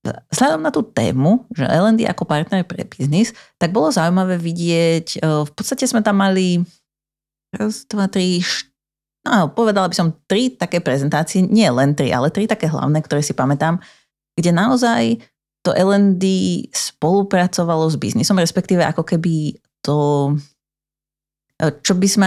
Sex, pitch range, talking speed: female, 145-190 Hz, 145 wpm